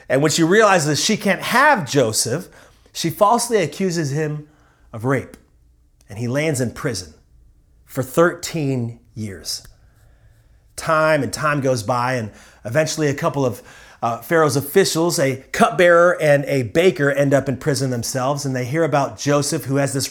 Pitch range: 115-155 Hz